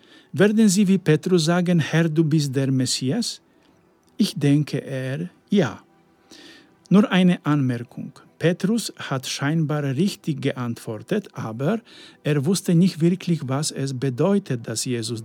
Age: 50-69